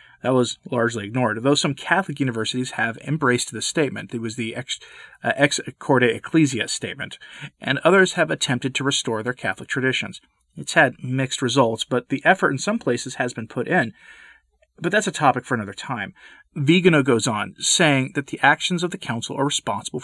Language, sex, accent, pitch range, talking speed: English, male, American, 115-145 Hz, 190 wpm